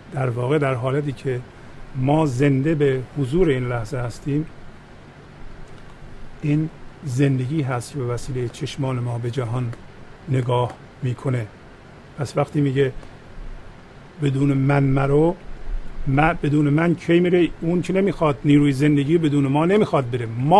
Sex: male